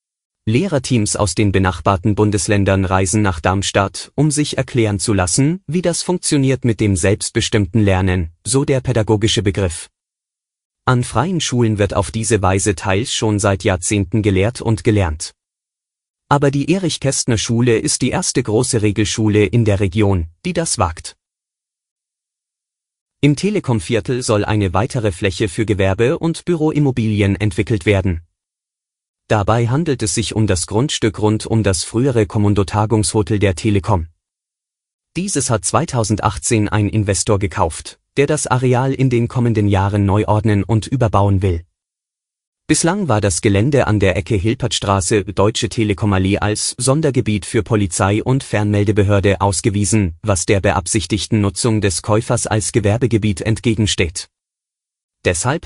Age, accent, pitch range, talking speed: 30-49, German, 100-120 Hz, 135 wpm